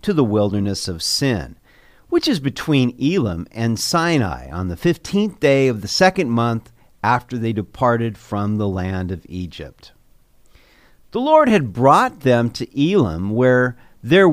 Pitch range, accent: 110-170 Hz, American